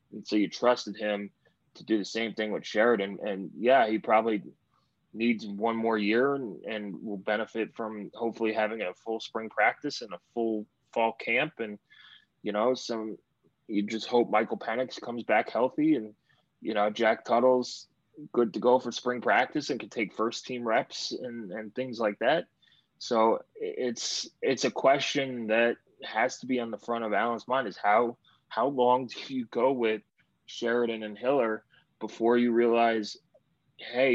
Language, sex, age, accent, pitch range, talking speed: English, male, 20-39, American, 110-125 Hz, 175 wpm